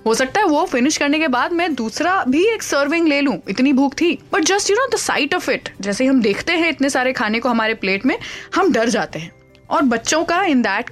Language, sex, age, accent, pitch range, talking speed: Hindi, female, 20-39, native, 225-290 Hz, 255 wpm